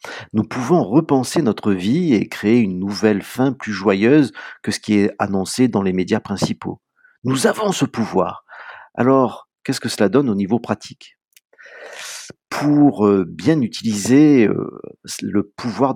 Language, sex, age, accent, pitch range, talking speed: French, male, 50-69, French, 110-165 Hz, 145 wpm